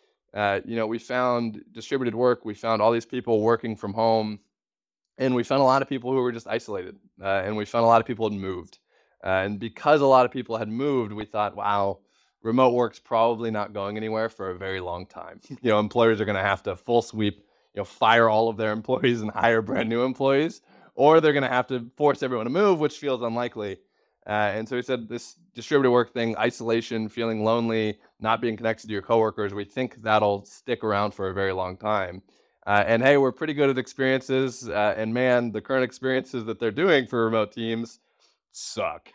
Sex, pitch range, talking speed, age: male, 105-125 Hz, 215 wpm, 20-39